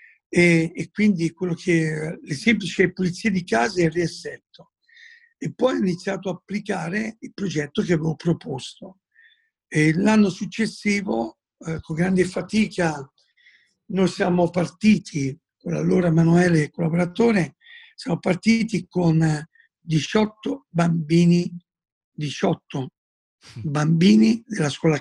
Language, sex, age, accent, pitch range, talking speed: Italian, male, 60-79, native, 165-205 Hz, 115 wpm